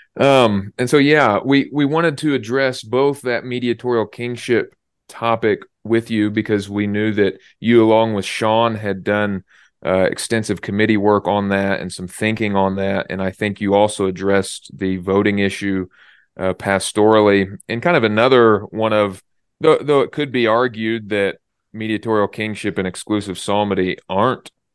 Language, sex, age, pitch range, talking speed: English, male, 30-49, 100-115 Hz, 160 wpm